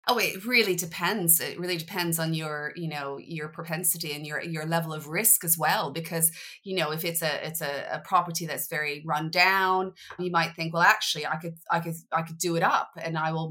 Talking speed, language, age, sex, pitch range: 230 wpm, English, 30-49, female, 165-215 Hz